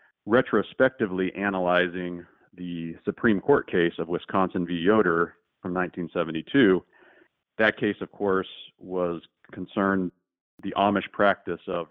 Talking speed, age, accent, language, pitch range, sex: 110 wpm, 40-59, American, English, 85-100 Hz, male